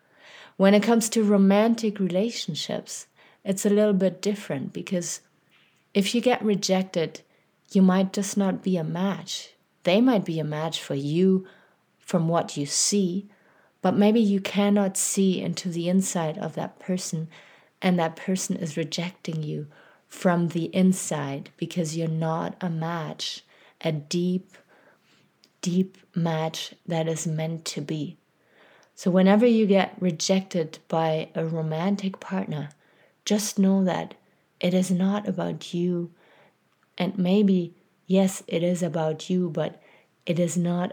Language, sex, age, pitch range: English, female, 30-49, 165-195 Hz